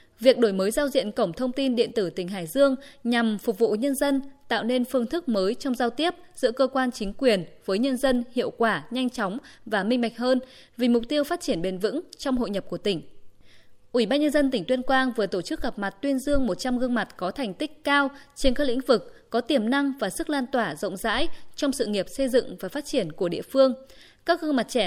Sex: female